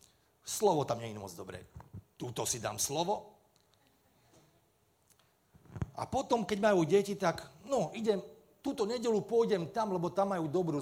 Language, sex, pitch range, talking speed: Slovak, male, 125-180 Hz, 145 wpm